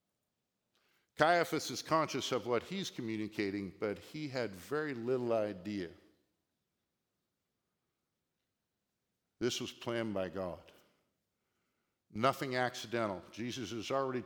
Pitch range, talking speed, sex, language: 110-140 Hz, 95 wpm, male, English